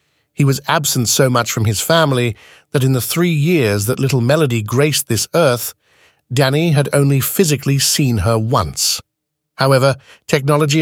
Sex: male